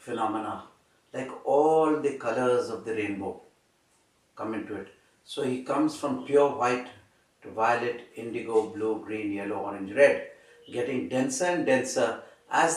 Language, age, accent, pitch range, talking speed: English, 60-79, Indian, 125-160 Hz, 140 wpm